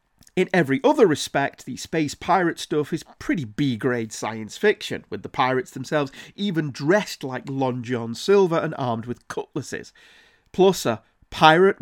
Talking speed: 150 wpm